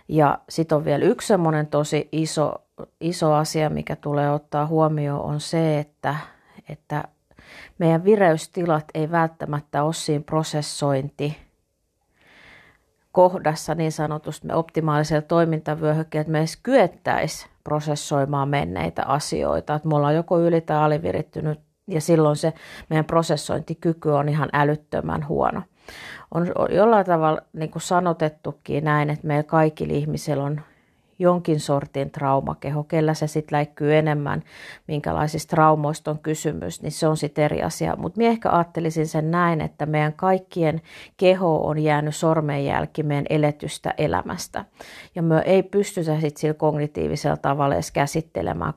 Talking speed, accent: 130 wpm, native